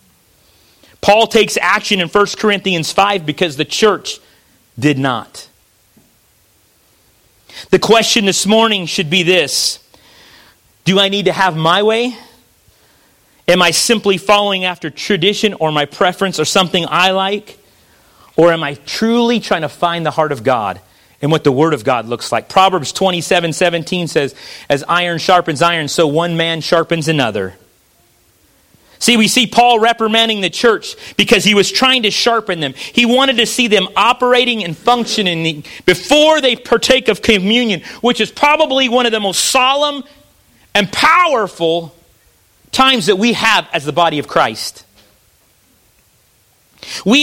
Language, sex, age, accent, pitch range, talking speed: English, male, 30-49, American, 165-235 Hz, 150 wpm